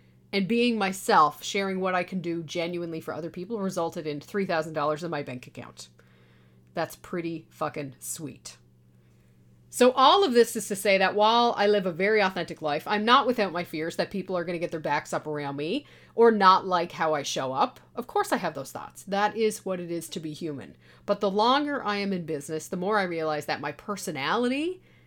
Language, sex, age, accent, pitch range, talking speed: English, female, 40-59, American, 155-210 Hz, 215 wpm